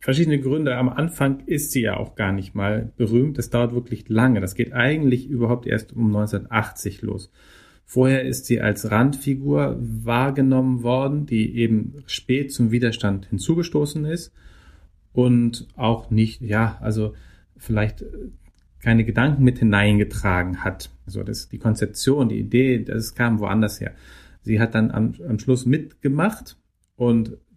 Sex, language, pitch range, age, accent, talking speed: male, German, 105-130 Hz, 40-59, German, 145 wpm